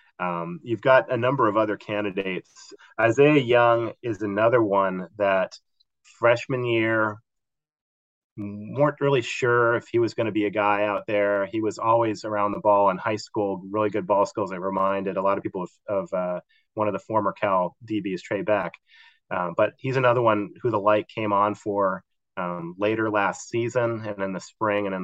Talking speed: 190 wpm